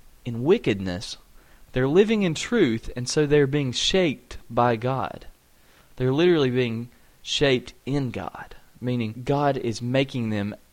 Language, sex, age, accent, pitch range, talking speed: English, male, 30-49, American, 110-145 Hz, 135 wpm